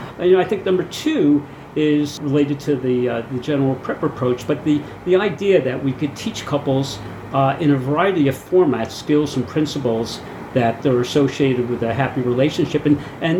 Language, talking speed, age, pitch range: English, 190 wpm, 50-69, 125-150 Hz